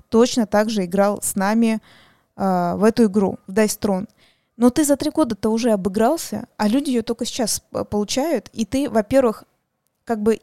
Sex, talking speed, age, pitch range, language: female, 180 wpm, 20-39, 195-235 Hz, Russian